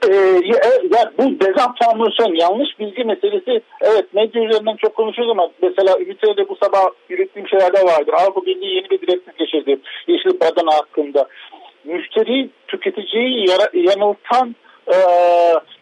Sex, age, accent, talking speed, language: male, 50-69, native, 135 wpm, Turkish